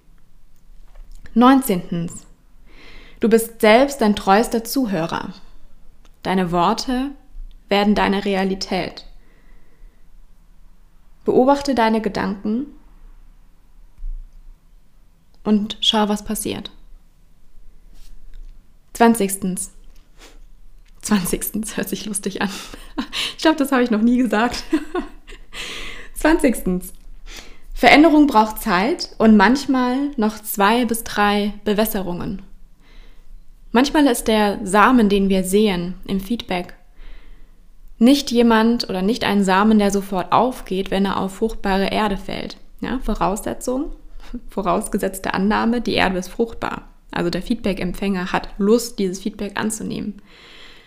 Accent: German